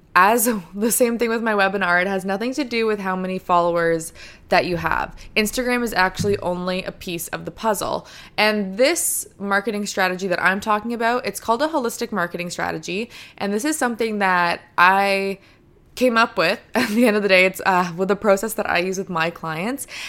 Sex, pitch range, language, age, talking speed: female, 175-220 Hz, English, 20-39, 205 wpm